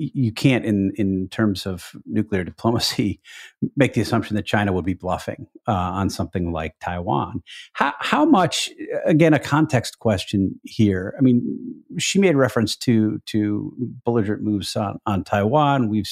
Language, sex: English, male